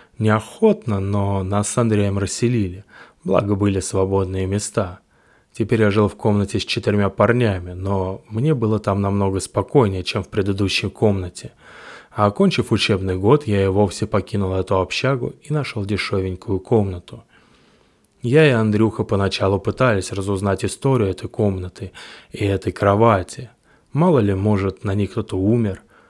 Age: 20-39